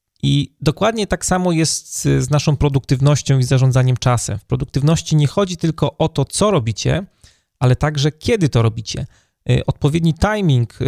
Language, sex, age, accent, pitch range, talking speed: Polish, male, 30-49, native, 125-150 Hz, 150 wpm